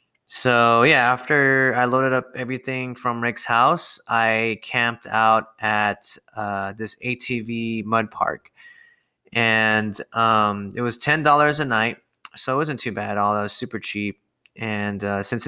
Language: English